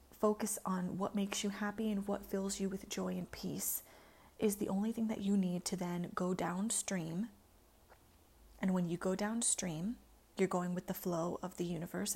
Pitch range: 185-220 Hz